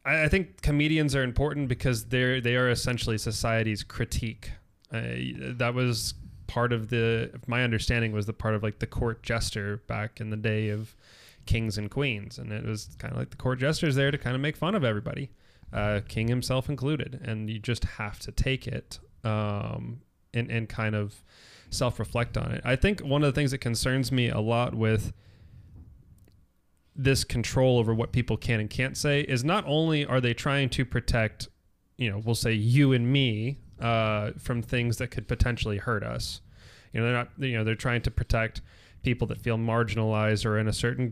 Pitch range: 110-130 Hz